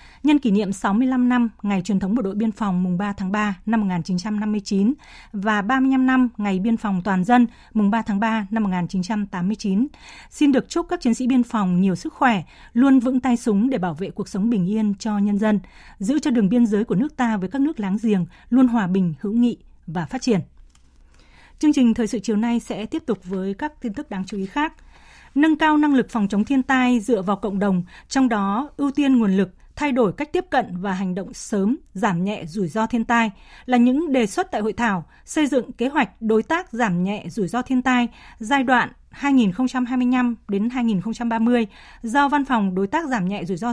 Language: Vietnamese